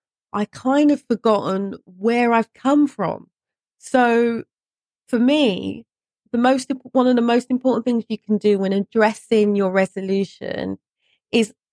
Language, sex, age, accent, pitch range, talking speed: English, female, 30-49, British, 205-245 Hz, 145 wpm